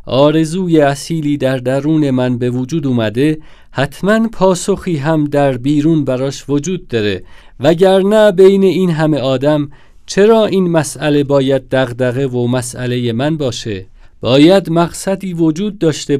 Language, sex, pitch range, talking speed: Persian, male, 125-170 Hz, 125 wpm